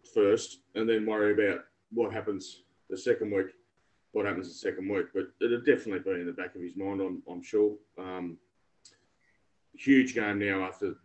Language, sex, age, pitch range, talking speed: English, male, 30-49, 105-155 Hz, 185 wpm